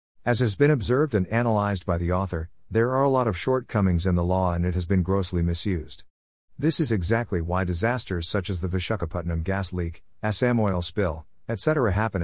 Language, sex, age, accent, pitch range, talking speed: English, male, 50-69, American, 90-115 Hz, 195 wpm